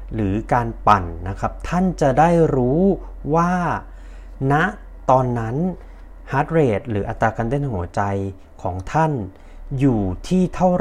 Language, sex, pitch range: Thai, male, 100-140 Hz